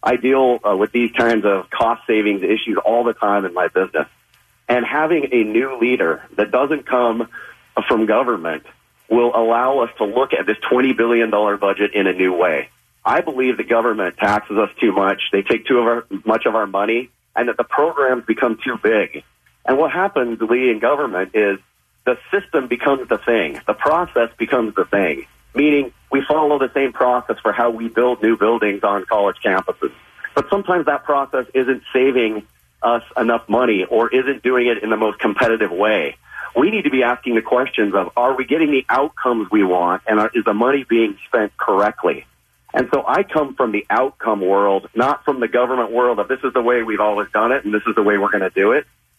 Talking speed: 200 wpm